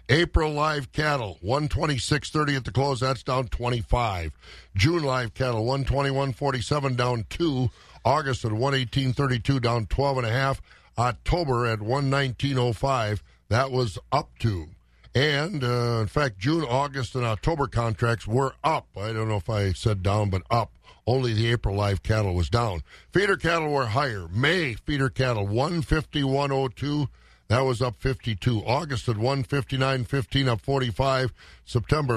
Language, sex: English, male